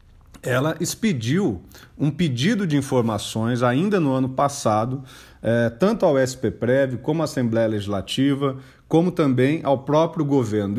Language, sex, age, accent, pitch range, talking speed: Portuguese, male, 40-59, Brazilian, 125-170 Hz, 130 wpm